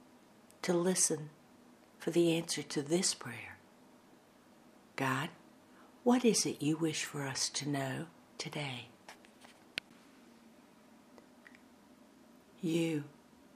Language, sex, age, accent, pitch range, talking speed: English, female, 60-79, American, 170-255 Hz, 90 wpm